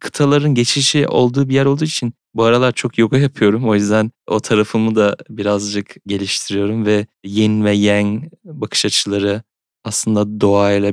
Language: Turkish